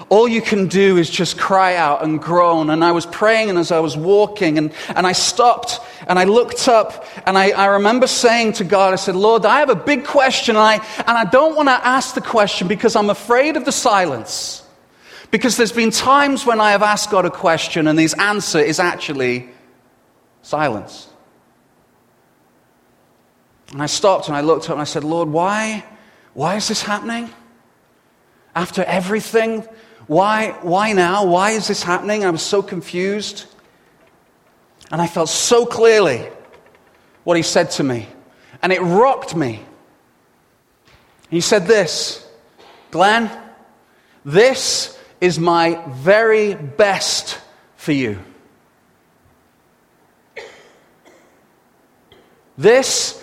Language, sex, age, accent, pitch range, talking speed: English, male, 30-49, British, 170-225 Hz, 145 wpm